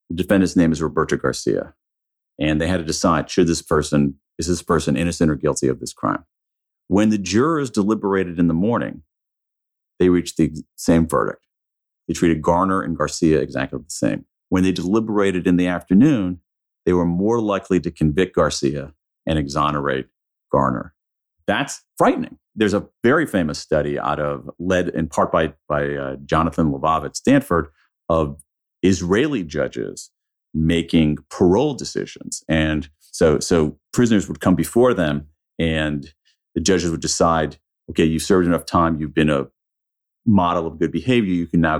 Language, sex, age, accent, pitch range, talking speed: English, male, 40-59, American, 75-95 Hz, 160 wpm